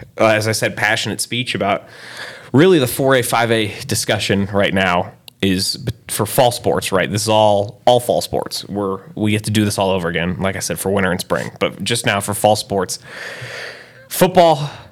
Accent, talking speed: American, 190 wpm